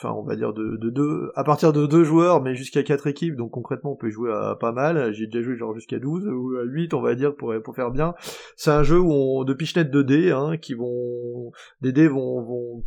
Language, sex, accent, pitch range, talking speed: French, male, French, 125-160 Hz, 270 wpm